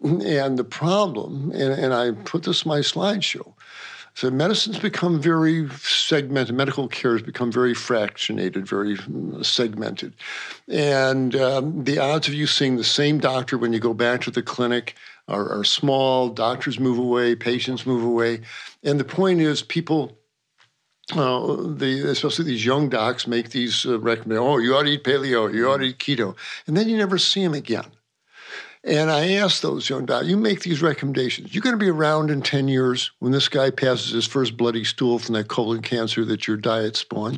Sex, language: male, English